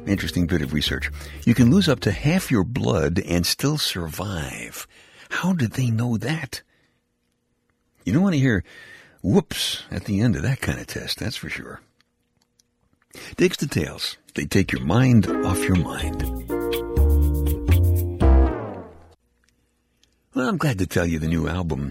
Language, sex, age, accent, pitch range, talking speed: English, male, 60-79, American, 75-120 Hz, 150 wpm